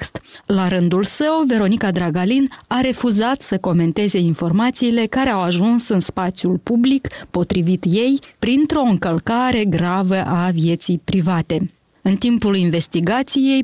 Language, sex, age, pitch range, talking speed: Romanian, female, 20-39, 175-240 Hz, 120 wpm